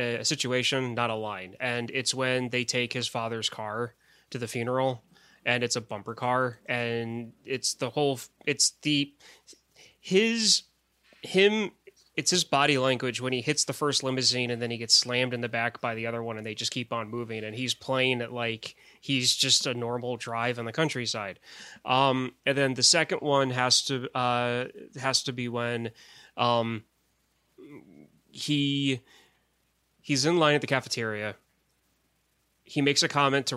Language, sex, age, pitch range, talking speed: English, male, 20-39, 115-135 Hz, 170 wpm